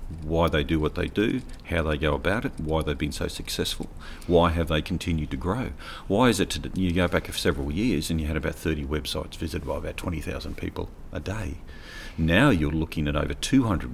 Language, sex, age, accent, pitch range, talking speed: English, male, 40-59, Australian, 75-90 Hz, 215 wpm